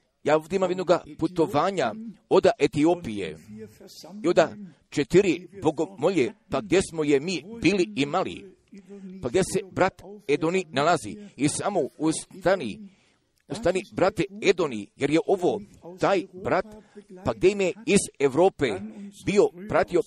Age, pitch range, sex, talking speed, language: 50-69, 165-205 Hz, male, 130 wpm, Croatian